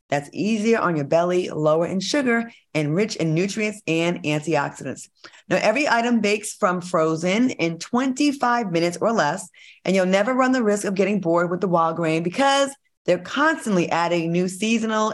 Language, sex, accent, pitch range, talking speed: English, female, American, 160-220 Hz, 175 wpm